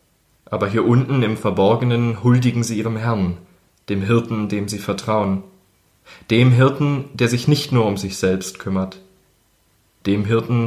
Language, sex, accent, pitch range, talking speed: German, male, German, 95-120 Hz, 145 wpm